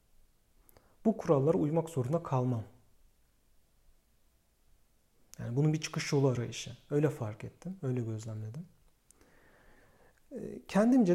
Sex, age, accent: male, 40-59, native